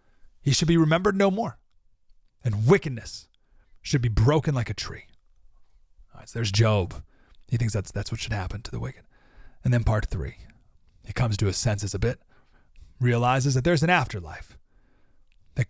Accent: American